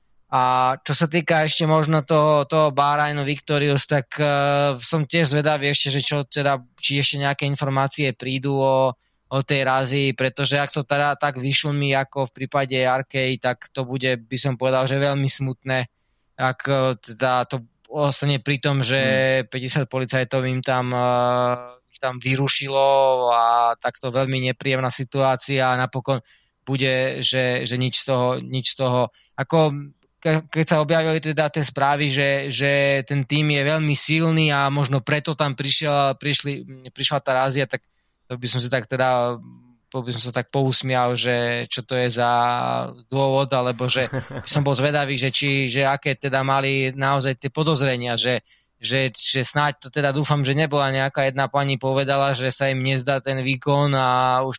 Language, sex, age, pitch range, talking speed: Slovak, male, 20-39, 130-145 Hz, 170 wpm